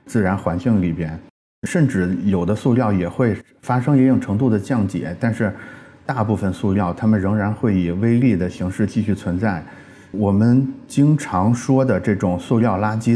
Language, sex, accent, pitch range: Chinese, male, native, 95-120 Hz